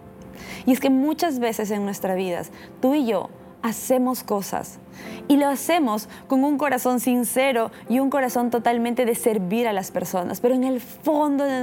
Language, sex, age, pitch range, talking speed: Spanish, female, 20-39, 200-260 Hz, 175 wpm